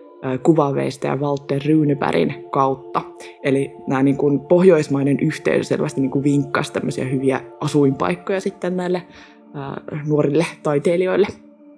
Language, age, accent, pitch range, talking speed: Finnish, 20-39, native, 135-175 Hz, 110 wpm